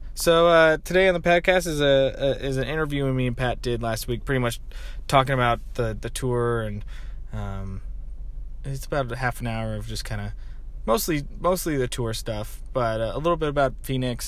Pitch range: 110-150 Hz